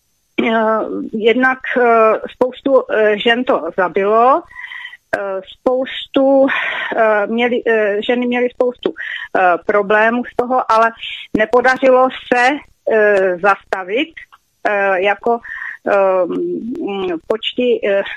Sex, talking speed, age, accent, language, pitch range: female, 60 wpm, 30-49, native, Czech, 220-260 Hz